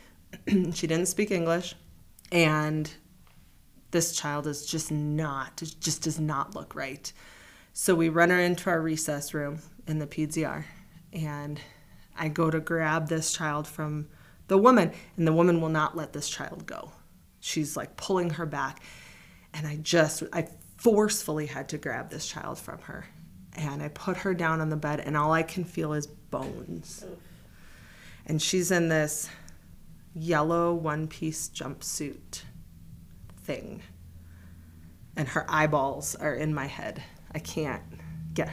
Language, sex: English, female